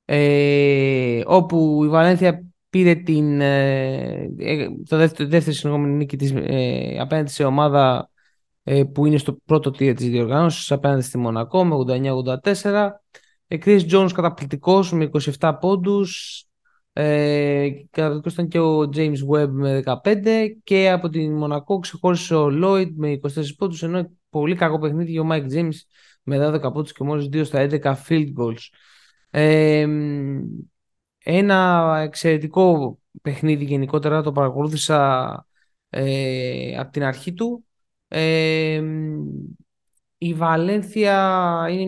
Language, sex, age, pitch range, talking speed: Greek, male, 20-39, 140-175 Hz, 125 wpm